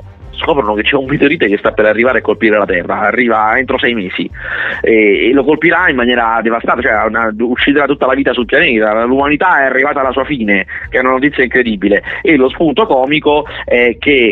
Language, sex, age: Italian, male, 30-49